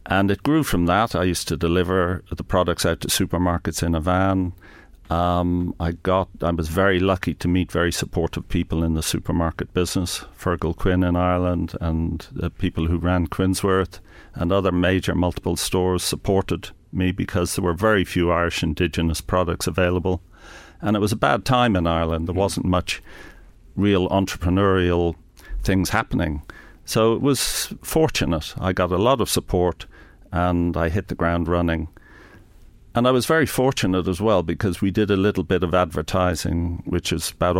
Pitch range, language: 85-95 Hz, English